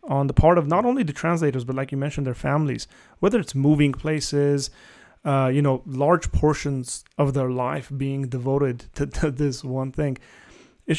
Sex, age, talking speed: male, 30-49, 185 wpm